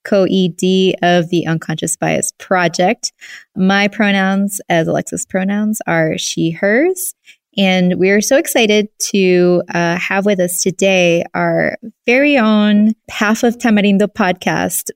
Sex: female